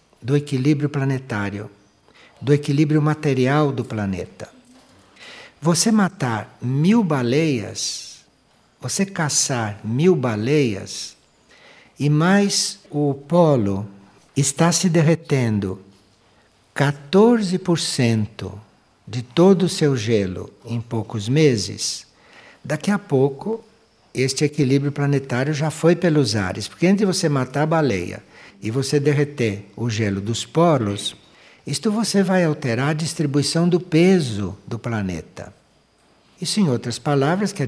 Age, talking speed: 60-79, 115 wpm